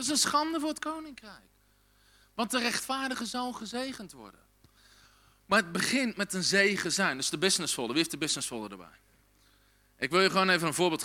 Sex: male